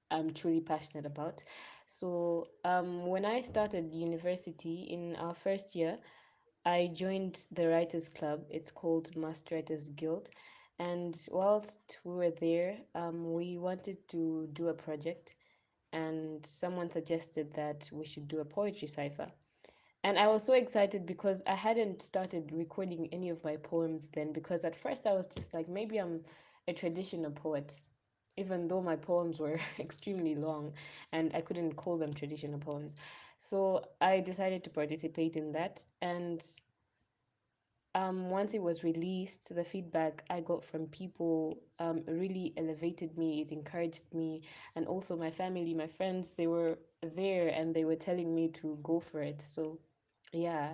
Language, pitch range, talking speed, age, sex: English, 155-180 Hz, 155 wpm, 20-39, female